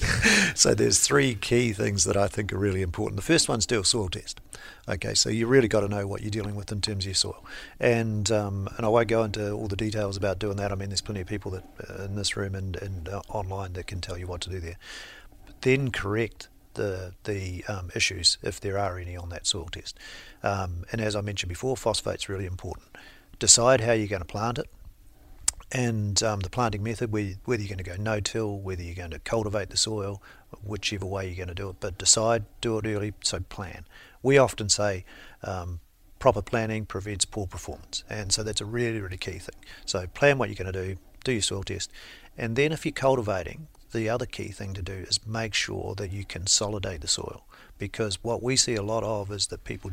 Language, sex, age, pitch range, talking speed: English, male, 50-69, 95-110 Hz, 230 wpm